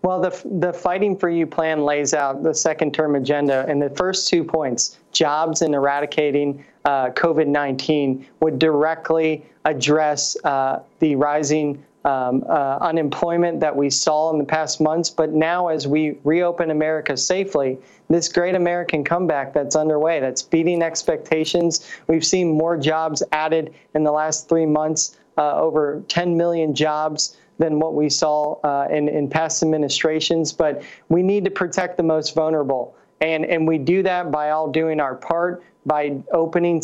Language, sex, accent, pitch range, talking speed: English, male, American, 150-165 Hz, 160 wpm